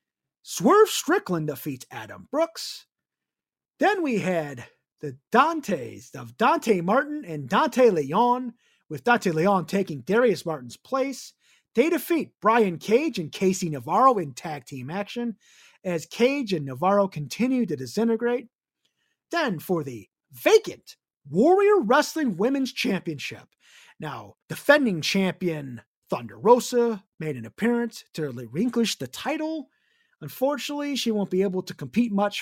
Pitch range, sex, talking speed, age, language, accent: 155-250 Hz, male, 130 wpm, 30-49, English, American